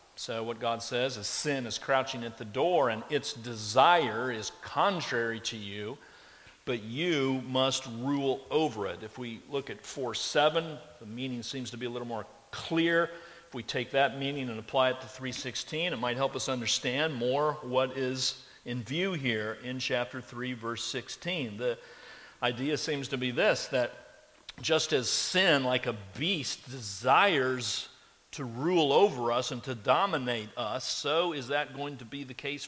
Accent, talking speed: American, 175 wpm